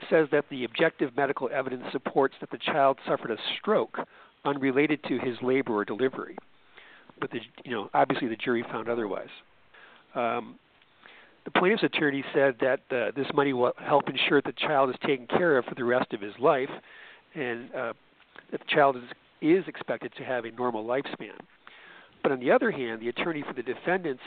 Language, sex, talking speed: English, male, 185 wpm